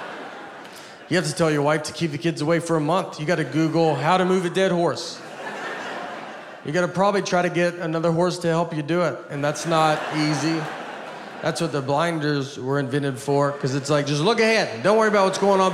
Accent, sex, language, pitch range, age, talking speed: American, male, English, 135-170 Hz, 30-49, 235 wpm